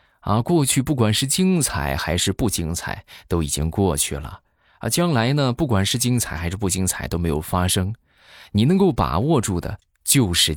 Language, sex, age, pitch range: Chinese, male, 20-39, 90-130 Hz